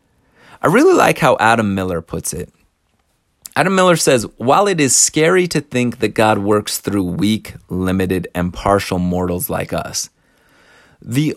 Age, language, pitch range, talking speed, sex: 30-49, English, 110-180 Hz, 155 wpm, male